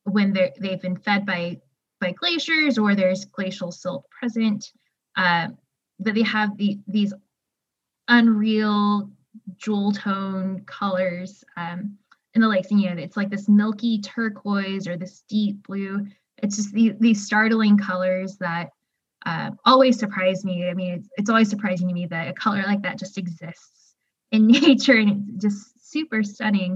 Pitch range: 185-220 Hz